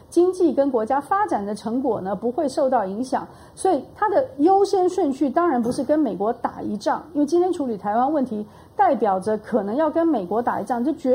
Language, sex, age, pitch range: Chinese, female, 40-59, 225-300 Hz